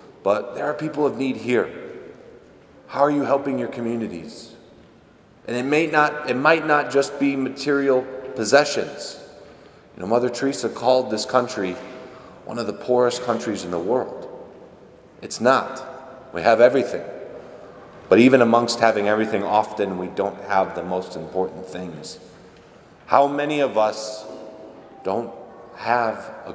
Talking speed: 145 wpm